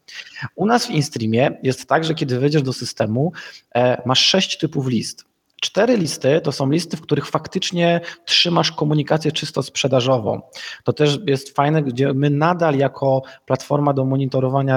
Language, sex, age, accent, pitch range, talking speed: Polish, male, 20-39, native, 125-155 Hz, 155 wpm